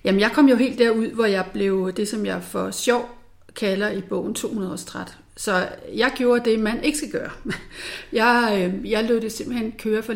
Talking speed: 205 wpm